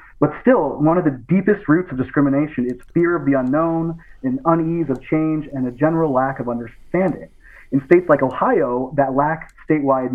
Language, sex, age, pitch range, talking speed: English, male, 30-49, 130-155 Hz, 185 wpm